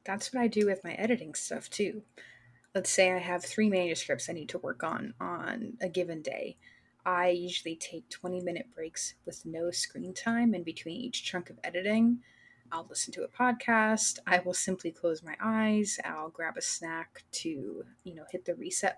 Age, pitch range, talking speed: 20-39, 170-205 Hz, 190 wpm